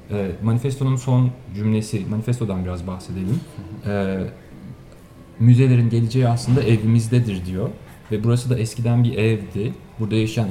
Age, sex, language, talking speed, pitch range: 40-59, male, Turkish, 120 wpm, 100-120 Hz